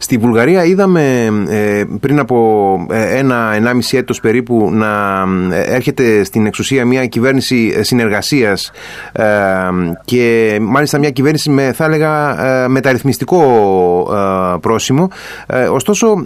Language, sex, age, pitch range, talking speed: Greek, male, 30-49, 110-150 Hz, 95 wpm